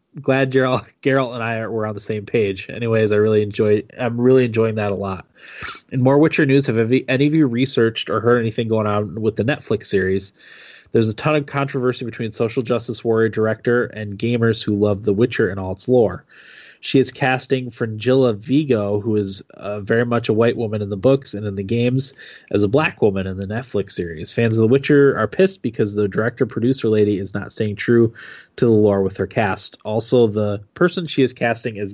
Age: 20-39